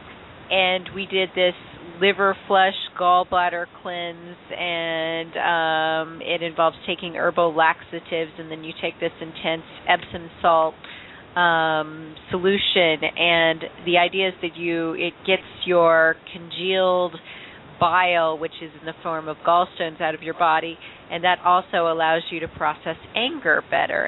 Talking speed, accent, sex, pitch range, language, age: 140 wpm, American, female, 165-180 Hz, English, 40-59